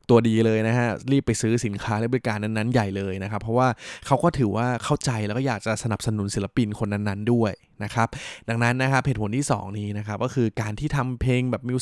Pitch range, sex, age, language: 105-130 Hz, male, 20-39, Thai